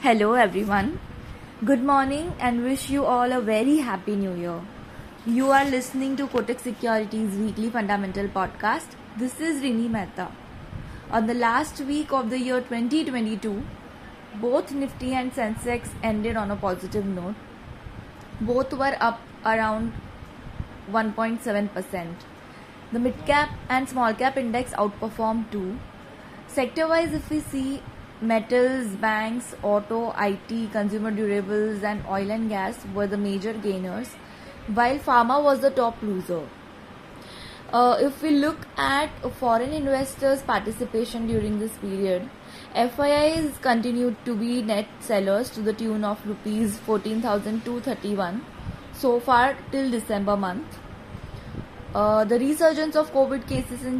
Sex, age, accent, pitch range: female, 20-39, Indian, 210-255 Hz